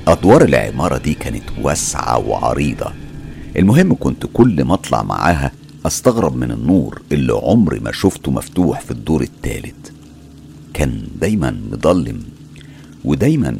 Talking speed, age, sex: 120 wpm, 50-69, male